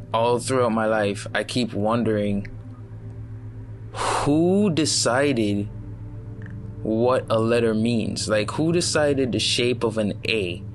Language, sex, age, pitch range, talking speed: English, male, 20-39, 110-125 Hz, 115 wpm